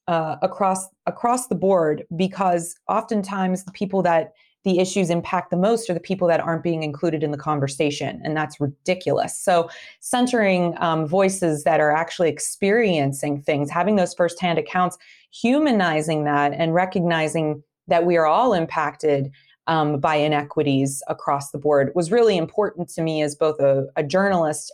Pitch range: 155-195 Hz